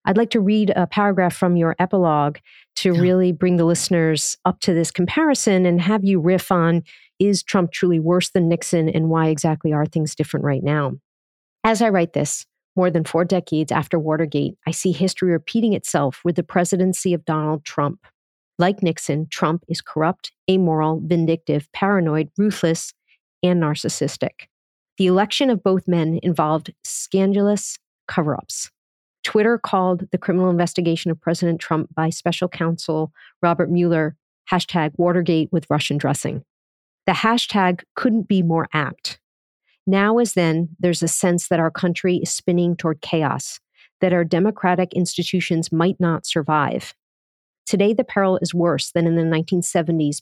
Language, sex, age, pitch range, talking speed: English, female, 40-59, 160-185 Hz, 155 wpm